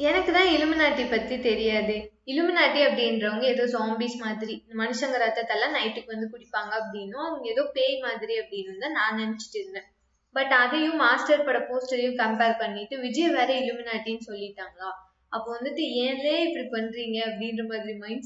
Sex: female